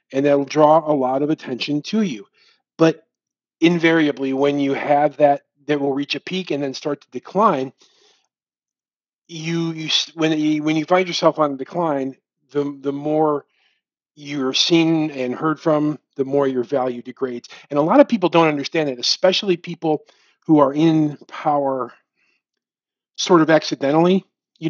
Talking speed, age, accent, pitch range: 165 wpm, 40-59, American, 135-160 Hz